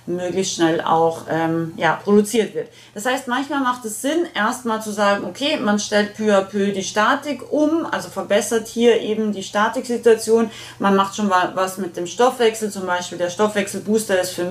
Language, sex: German, female